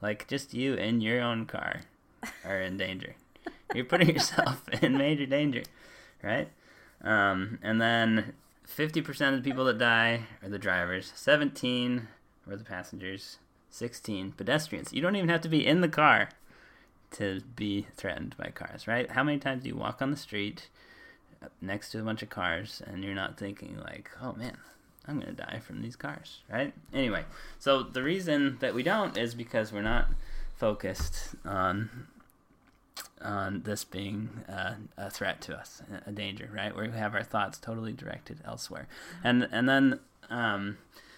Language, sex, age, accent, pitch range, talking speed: English, male, 10-29, American, 100-130 Hz, 170 wpm